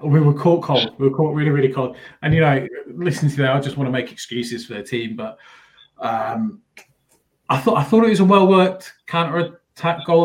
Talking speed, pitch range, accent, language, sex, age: 215 wpm, 120-140 Hz, British, English, male, 20-39